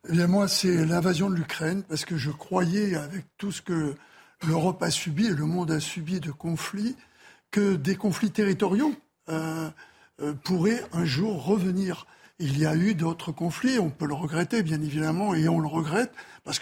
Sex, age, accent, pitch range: male, 60-79, French, 160-200 Hz